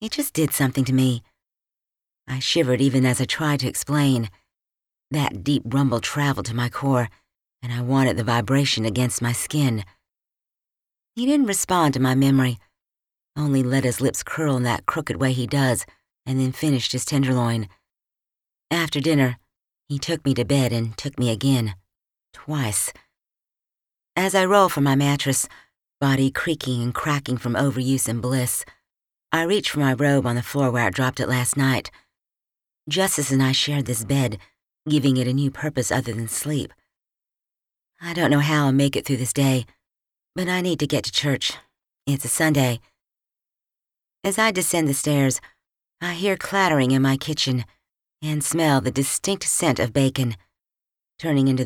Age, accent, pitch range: 50-69, American, 125-145 Hz